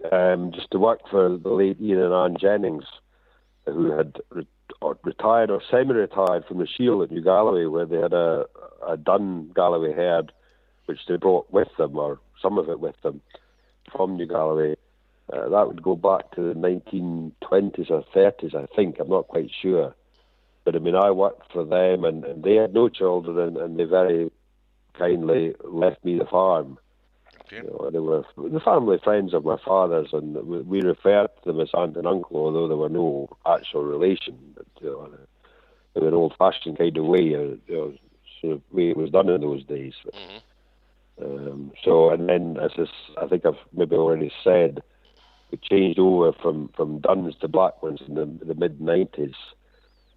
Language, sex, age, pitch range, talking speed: English, male, 60-79, 75-100 Hz, 185 wpm